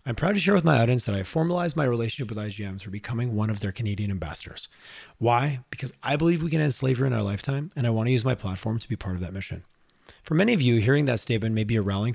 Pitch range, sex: 100-135 Hz, male